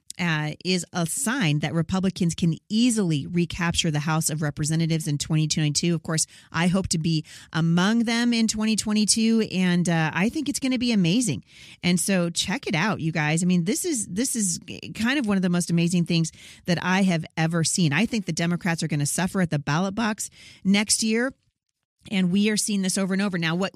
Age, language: 40-59, English